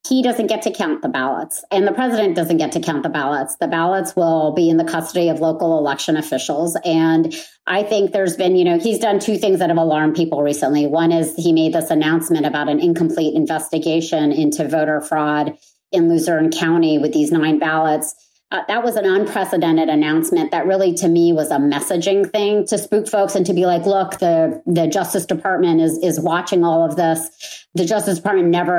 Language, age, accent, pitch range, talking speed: English, 30-49, American, 160-200 Hz, 205 wpm